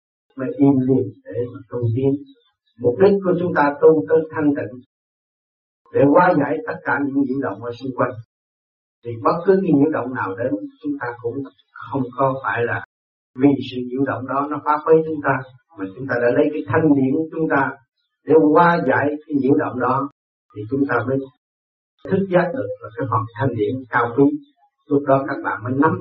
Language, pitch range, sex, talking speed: Vietnamese, 120-150 Hz, male, 205 wpm